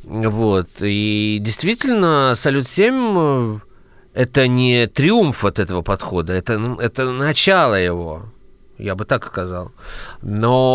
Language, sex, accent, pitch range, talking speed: Russian, male, native, 105-140 Hz, 110 wpm